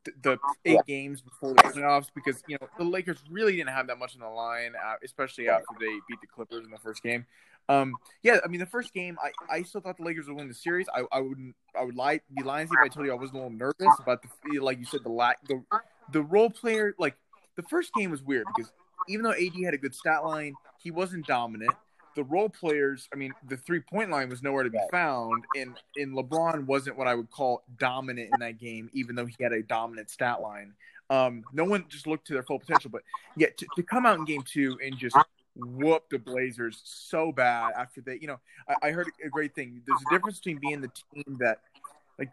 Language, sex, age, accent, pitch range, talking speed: English, male, 20-39, American, 125-155 Hz, 240 wpm